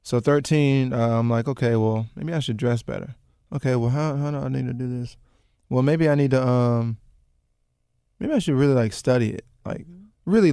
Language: English